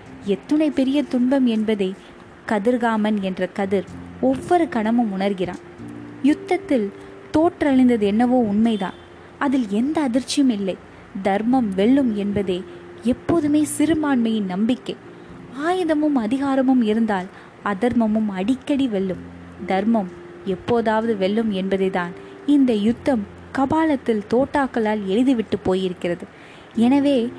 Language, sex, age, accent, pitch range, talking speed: Tamil, female, 20-39, native, 200-270 Hz, 90 wpm